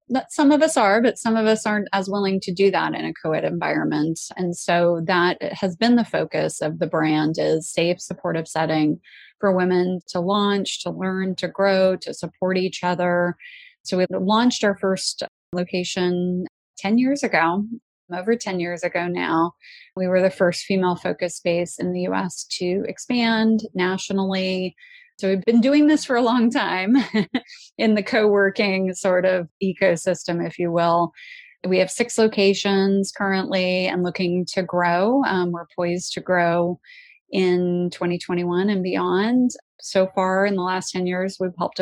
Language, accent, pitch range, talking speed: English, American, 175-200 Hz, 165 wpm